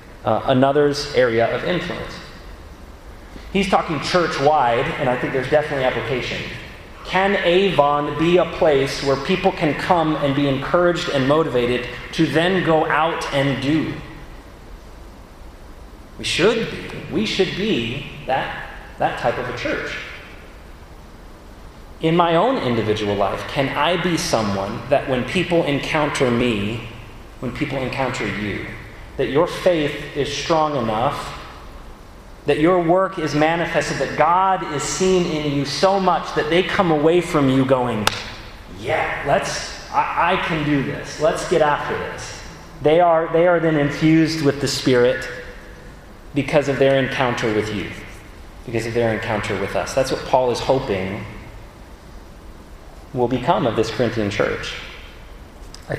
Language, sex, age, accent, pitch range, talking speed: English, male, 30-49, American, 110-160 Hz, 145 wpm